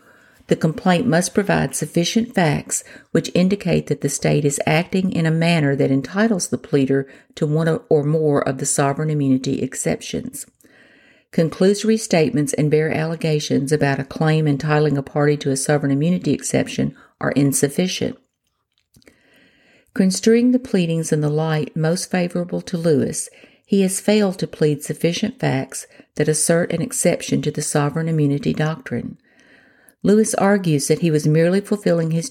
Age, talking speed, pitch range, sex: 50-69, 150 wpm, 145-185 Hz, female